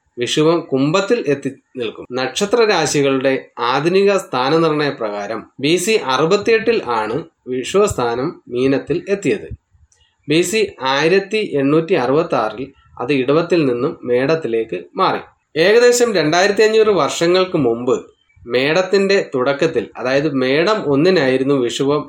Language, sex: Malayalam, male